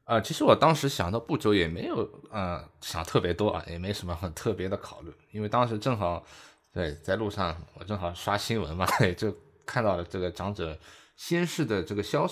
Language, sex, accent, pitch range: Chinese, male, native, 95-140 Hz